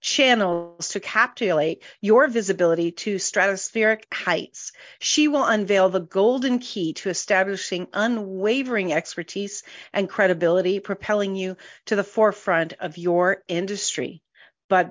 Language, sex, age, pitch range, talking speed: English, female, 40-59, 180-220 Hz, 115 wpm